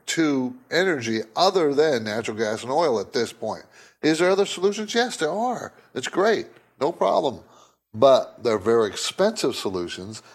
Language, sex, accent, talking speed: English, male, American, 155 wpm